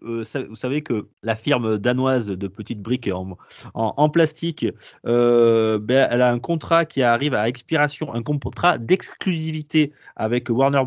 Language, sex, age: French, male, 30-49